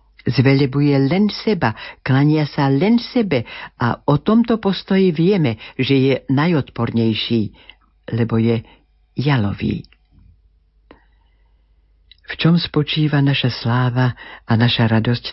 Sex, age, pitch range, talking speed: female, 50-69, 105-140 Hz, 100 wpm